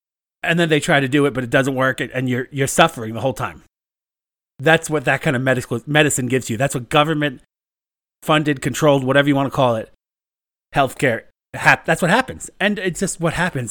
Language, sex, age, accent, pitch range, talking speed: English, male, 30-49, American, 125-160 Hz, 205 wpm